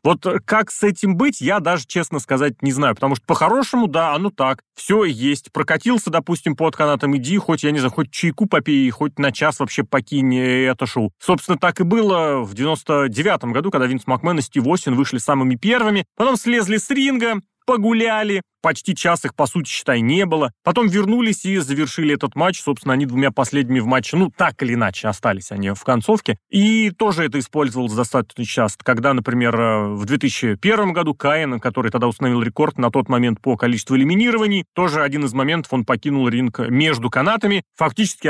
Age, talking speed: 30-49, 185 wpm